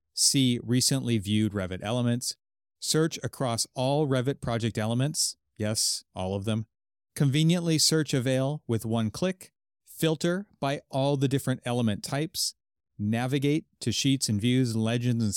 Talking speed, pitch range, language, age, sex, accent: 135 wpm, 110-140 Hz, English, 30-49, male, American